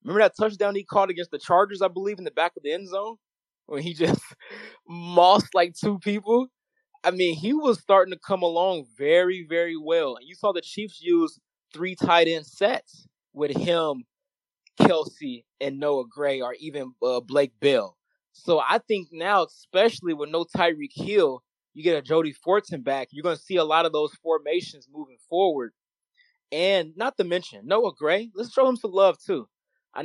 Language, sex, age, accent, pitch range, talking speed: English, male, 20-39, American, 155-205 Hz, 190 wpm